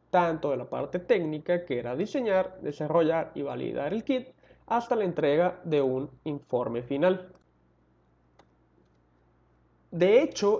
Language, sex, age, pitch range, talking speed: Spanish, male, 30-49, 150-215 Hz, 125 wpm